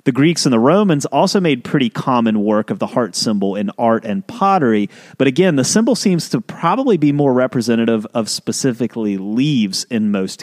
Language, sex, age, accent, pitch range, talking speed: English, male, 30-49, American, 110-160 Hz, 190 wpm